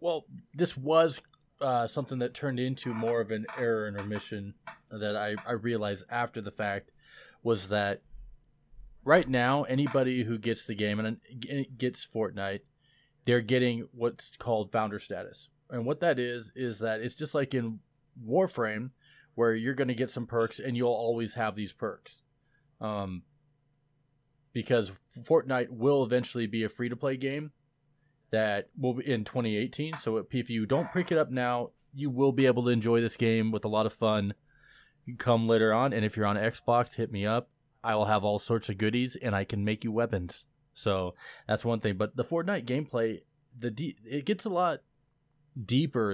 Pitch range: 110-135 Hz